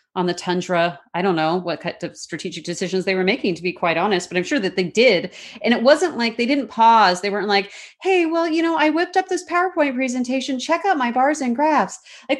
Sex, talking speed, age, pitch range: female, 245 wpm, 30-49, 180-250 Hz